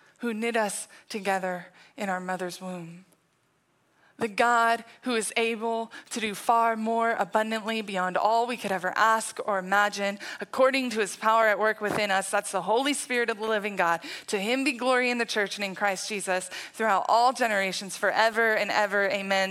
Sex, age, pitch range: female, 20-39, 205-255 Hz